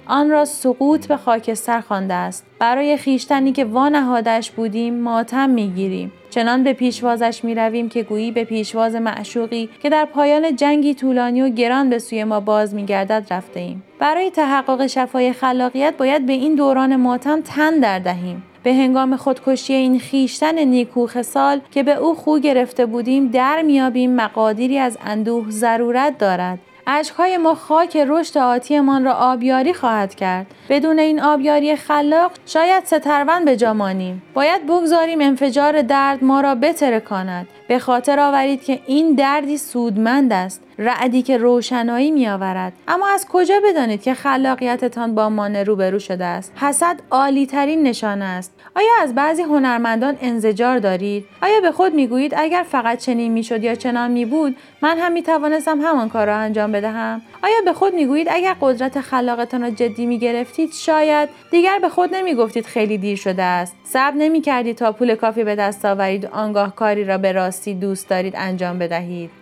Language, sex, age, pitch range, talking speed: Persian, female, 30-49, 225-290 Hz, 165 wpm